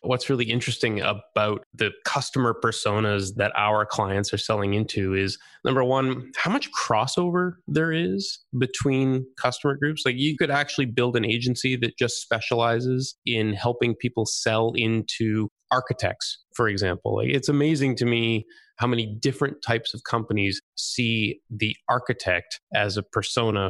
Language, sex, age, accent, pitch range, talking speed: English, male, 20-39, American, 105-125 Hz, 145 wpm